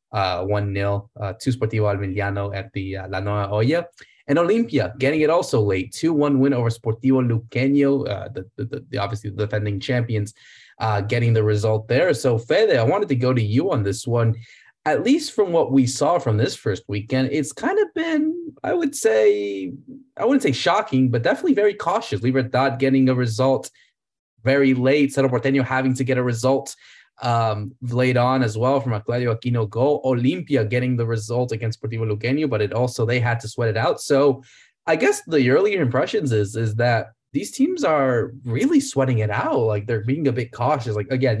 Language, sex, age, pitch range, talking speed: English, male, 20-39, 110-135 Hz, 195 wpm